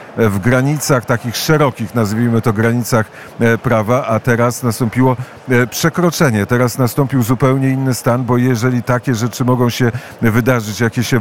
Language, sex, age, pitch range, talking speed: Polish, male, 50-69, 115-130 Hz, 140 wpm